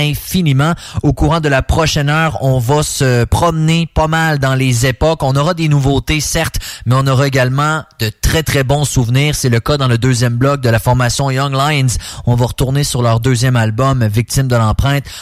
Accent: Canadian